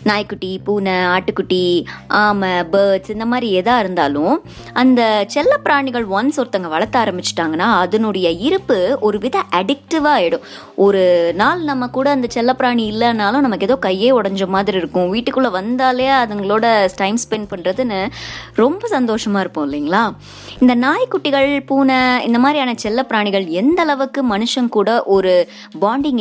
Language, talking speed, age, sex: Tamil, 130 wpm, 20-39, male